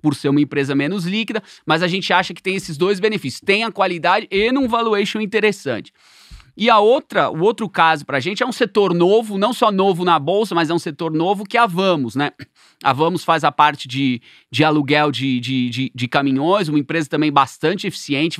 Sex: male